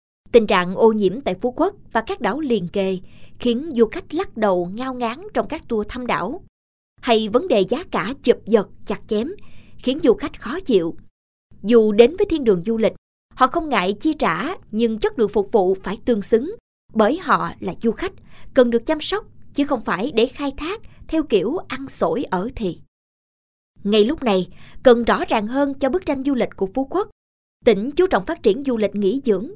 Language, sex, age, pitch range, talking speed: Vietnamese, female, 20-39, 210-290 Hz, 210 wpm